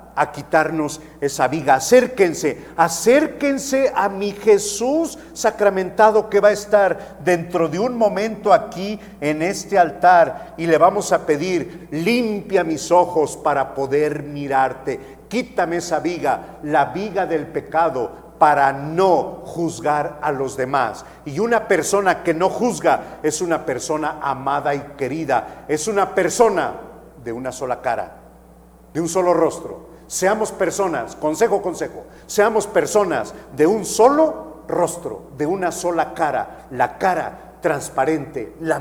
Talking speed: 135 wpm